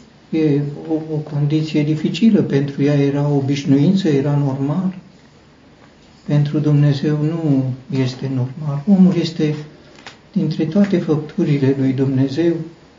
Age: 60-79